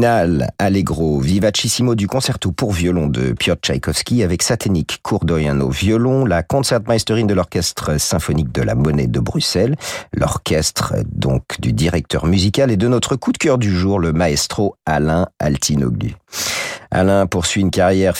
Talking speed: 150 wpm